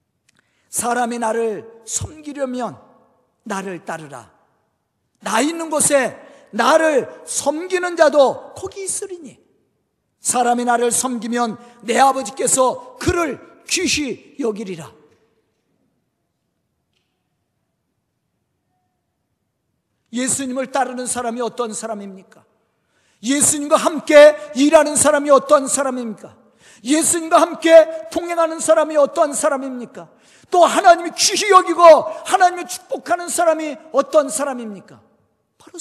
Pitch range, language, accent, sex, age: 230-320 Hz, Korean, native, male, 50-69